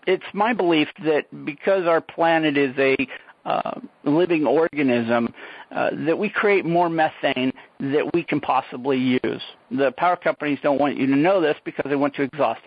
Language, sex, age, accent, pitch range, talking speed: English, male, 50-69, American, 135-165 Hz, 175 wpm